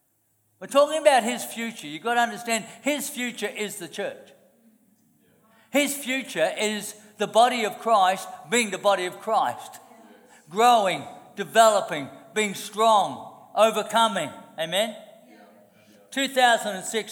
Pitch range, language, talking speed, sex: 180-240 Hz, English, 115 wpm, male